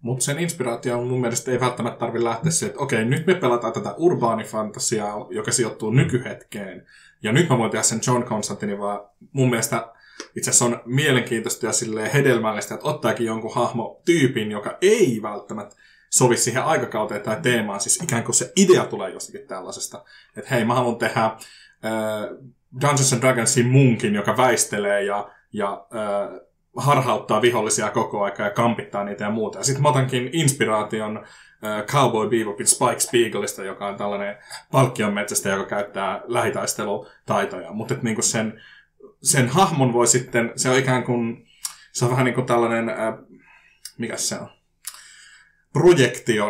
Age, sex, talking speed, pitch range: 20-39, male, 155 wpm, 110-130 Hz